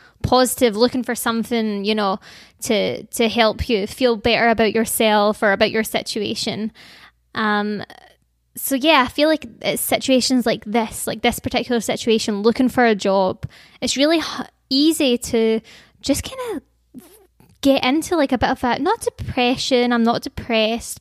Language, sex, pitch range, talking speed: English, female, 230-265 Hz, 155 wpm